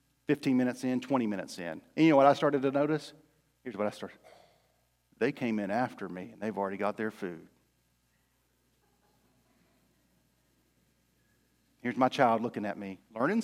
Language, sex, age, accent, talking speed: English, male, 40-59, American, 160 wpm